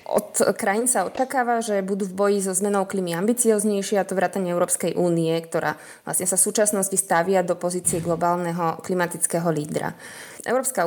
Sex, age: female, 20-39